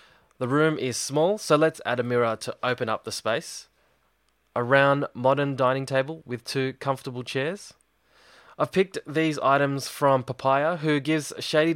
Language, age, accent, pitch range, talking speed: English, 20-39, Australian, 110-135 Hz, 165 wpm